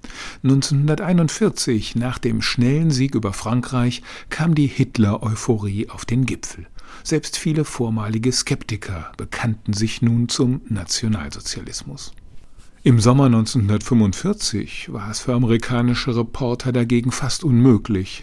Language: German